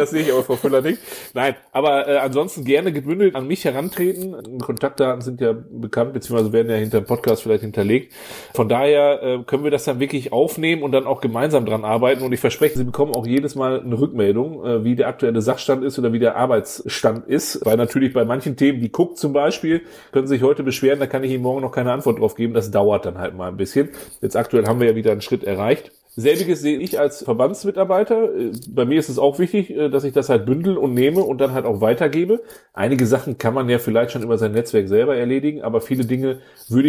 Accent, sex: German, male